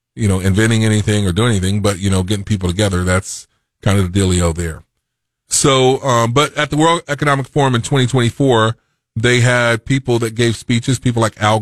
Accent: American